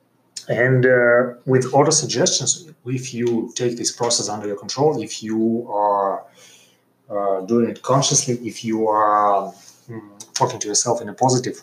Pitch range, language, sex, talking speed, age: 105-135 Hz, English, male, 155 wpm, 30-49